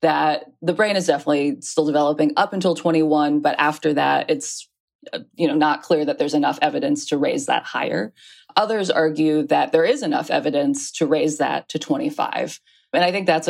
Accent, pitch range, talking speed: American, 150-235 Hz, 185 wpm